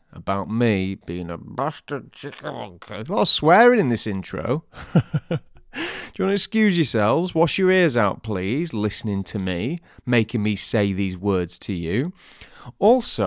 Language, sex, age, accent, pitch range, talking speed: English, male, 30-49, British, 100-140 Hz, 165 wpm